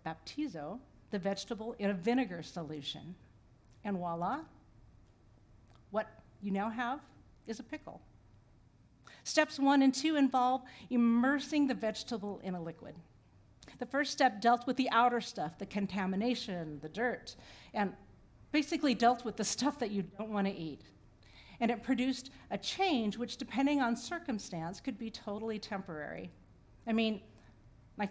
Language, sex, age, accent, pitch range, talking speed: English, female, 50-69, American, 175-250 Hz, 145 wpm